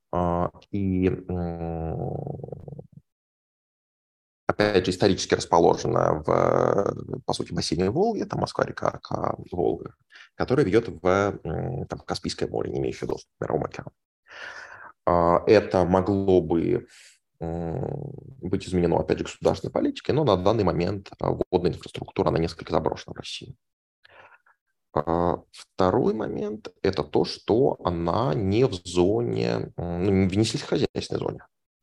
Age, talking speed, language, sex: 20-39, 110 wpm, English, male